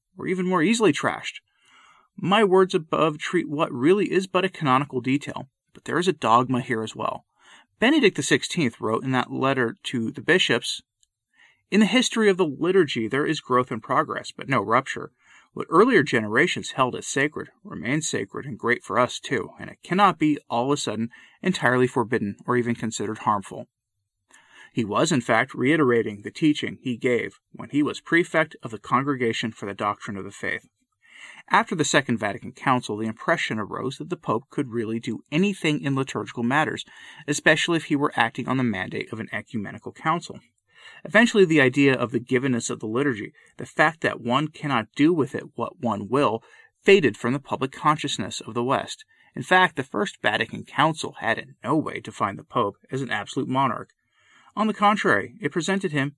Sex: male